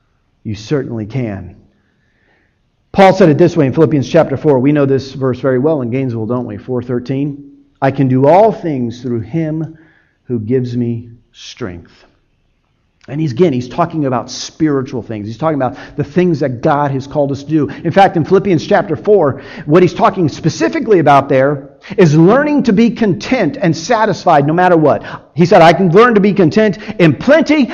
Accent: American